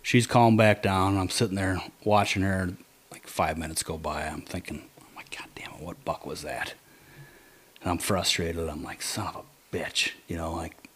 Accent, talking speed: American, 215 wpm